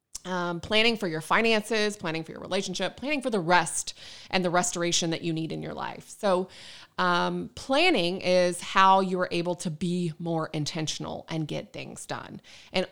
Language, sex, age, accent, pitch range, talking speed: English, female, 20-39, American, 175-215 Hz, 175 wpm